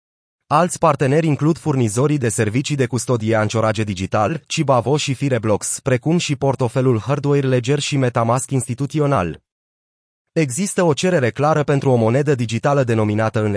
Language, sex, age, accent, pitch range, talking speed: Romanian, male, 30-49, native, 115-150 Hz, 135 wpm